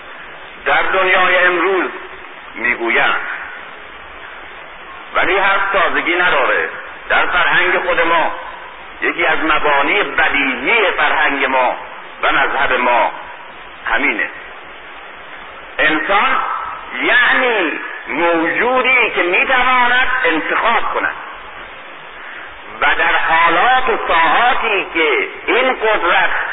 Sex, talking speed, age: male, 85 wpm, 50-69